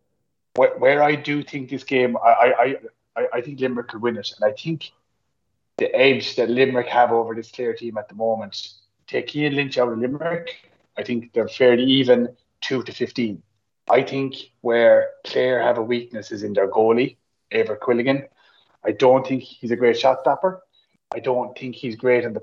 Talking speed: 195 wpm